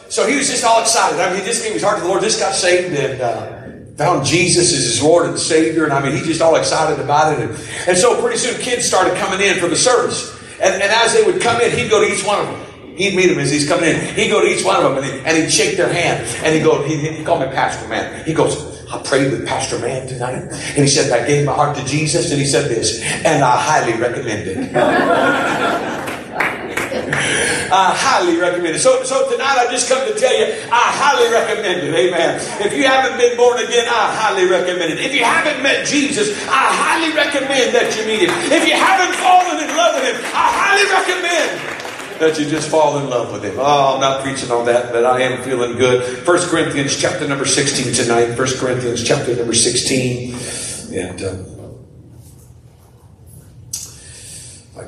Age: 50-69